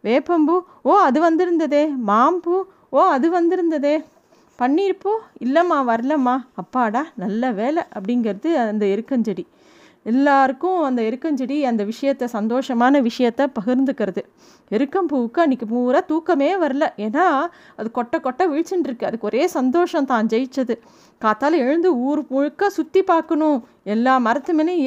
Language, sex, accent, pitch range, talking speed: Tamil, female, native, 235-310 Hz, 120 wpm